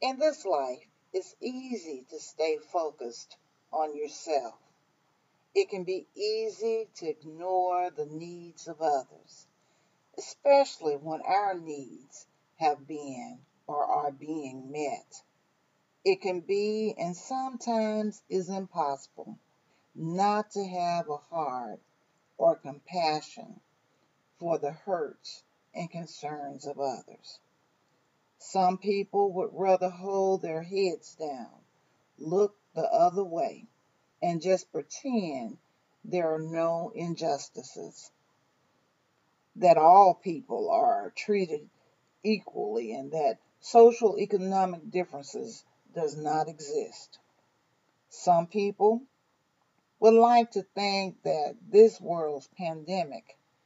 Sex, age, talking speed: female, 40-59, 105 wpm